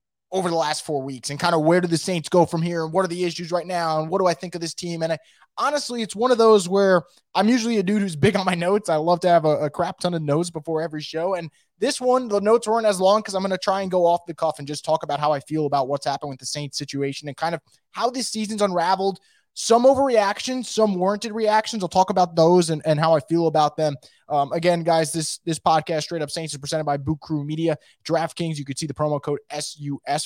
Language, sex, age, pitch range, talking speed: English, male, 20-39, 150-200 Hz, 270 wpm